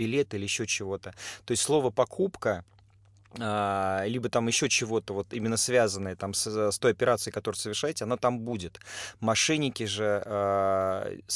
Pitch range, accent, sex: 105-130 Hz, native, male